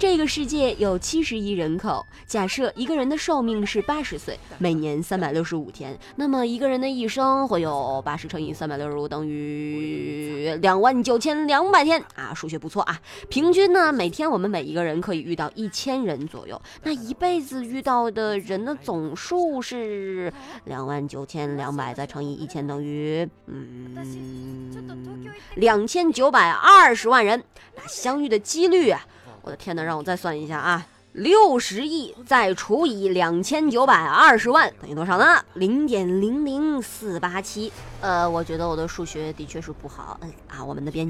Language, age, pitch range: Chinese, 20-39, 160-260 Hz